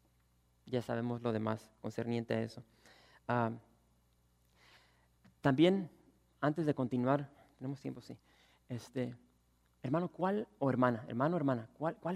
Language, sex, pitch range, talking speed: English, male, 115-155 Hz, 120 wpm